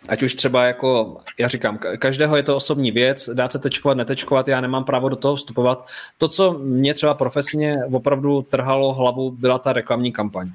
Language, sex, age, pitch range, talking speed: Czech, male, 20-39, 120-135 Hz, 190 wpm